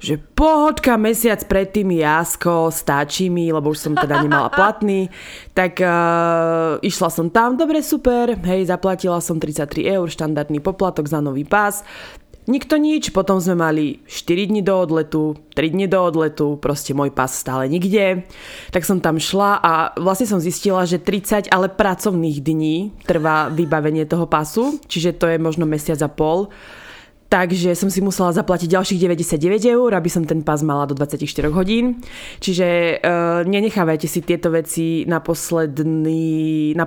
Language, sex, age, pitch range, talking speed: Slovak, female, 20-39, 155-190 Hz, 160 wpm